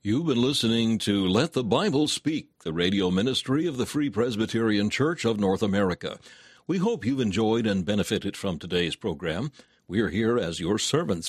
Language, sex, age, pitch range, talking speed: English, male, 60-79, 100-125 Hz, 175 wpm